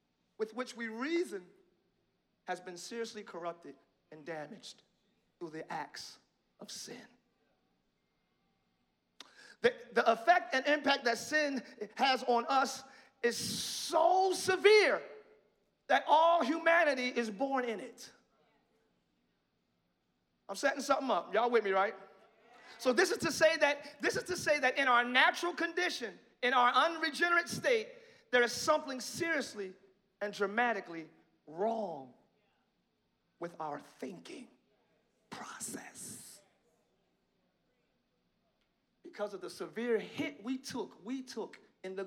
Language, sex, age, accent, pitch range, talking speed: English, male, 40-59, American, 195-300 Hz, 120 wpm